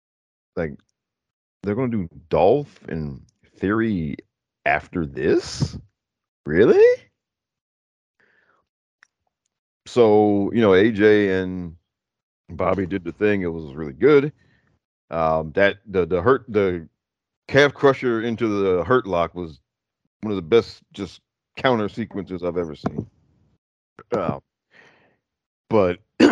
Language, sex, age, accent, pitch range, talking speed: English, male, 40-59, American, 80-120 Hz, 110 wpm